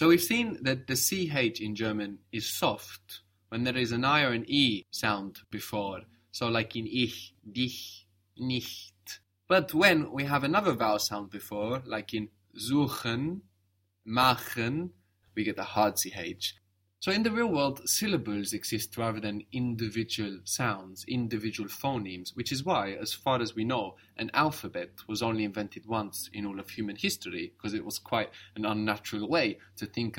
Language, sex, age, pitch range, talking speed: English, male, 20-39, 100-130 Hz, 165 wpm